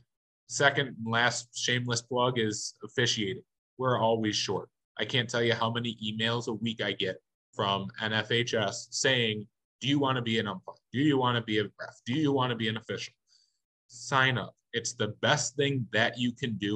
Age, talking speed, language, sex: 30-49, 195 wpm, English, male